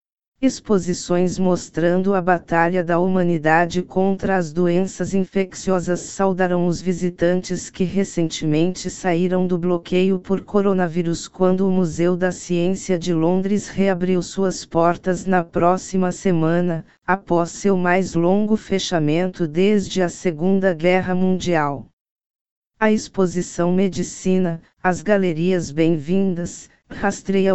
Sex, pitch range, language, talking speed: female, 175-190 Hz, Portuguese, 110 wpm